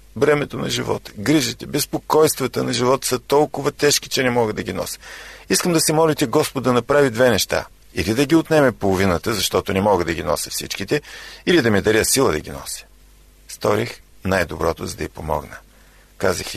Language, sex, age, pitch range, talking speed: Bulgarian, male, 50-69, 95-145 Hz, 190 wpm